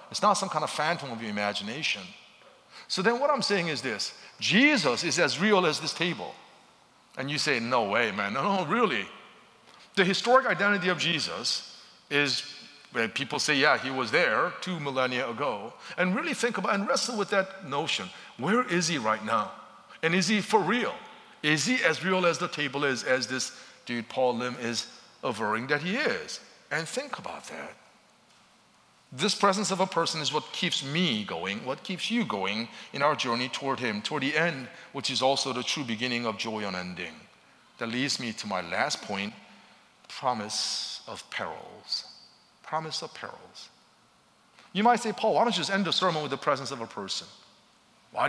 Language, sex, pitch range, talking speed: English, male, 130-195 Hz, 190 wpm